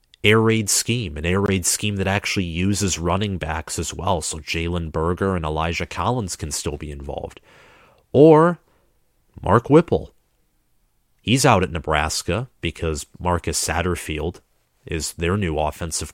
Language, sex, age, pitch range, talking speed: English, male, 30-49, 80-105 Hz, 140 wpm